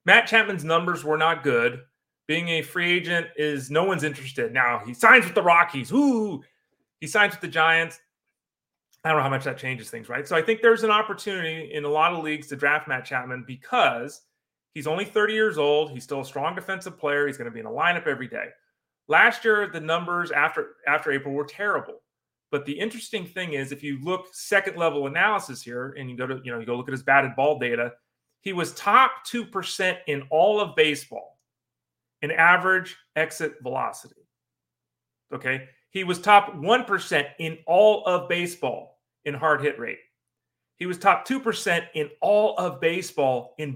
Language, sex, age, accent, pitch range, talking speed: English, male, 30-49, American, 140-190 Hz, 190 wpm